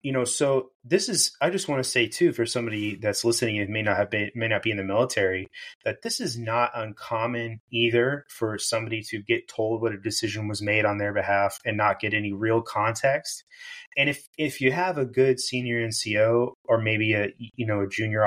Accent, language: American, English